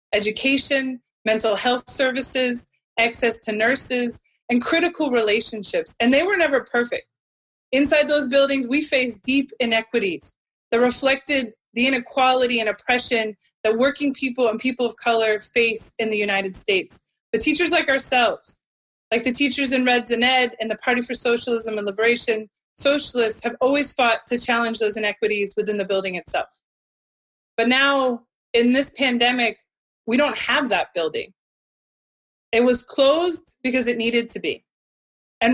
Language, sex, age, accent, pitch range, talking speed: English, female, 20-39, American, 225-275 Hz, 150 wpm